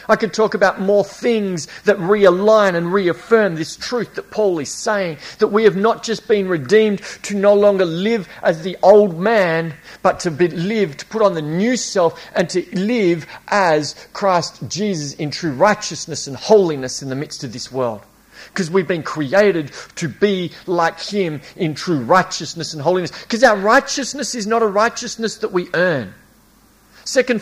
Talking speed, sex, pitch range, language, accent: 175 wpm, male, 165-220 Hz, English, Australian